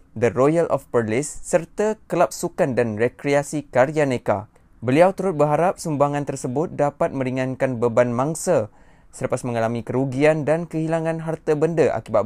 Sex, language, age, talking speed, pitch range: male, Malay, 20-39, 130 wpm, 120-155 Hz